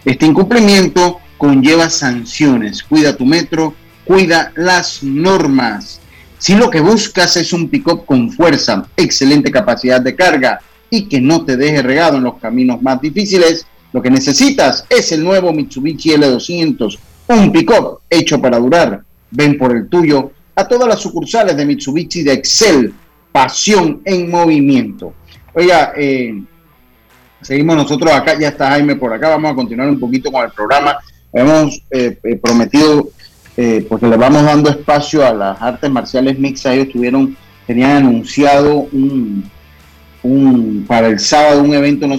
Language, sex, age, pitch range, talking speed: Spanish, male, 40-59, 125-160 Hz, 150 wpm